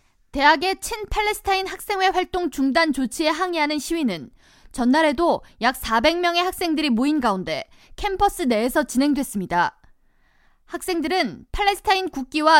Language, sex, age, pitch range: Korean, female, 20-39, 255-360 Hz